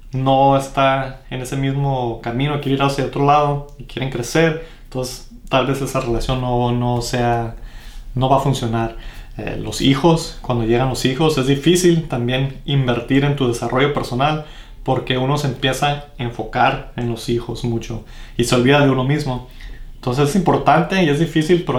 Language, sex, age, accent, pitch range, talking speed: Spanish, male, 30-49, Mexican, 120-140 Hz, 175 wpm